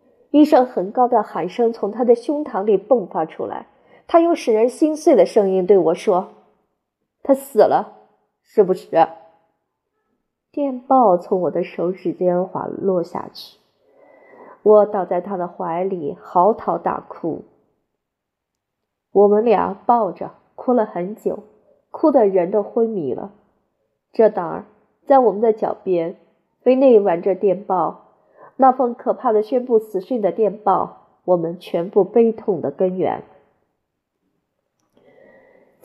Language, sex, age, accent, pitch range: Chinese, female, 30-49, native, 185-250 Hz